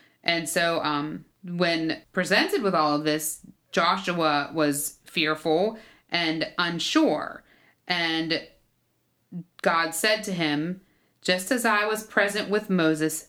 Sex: female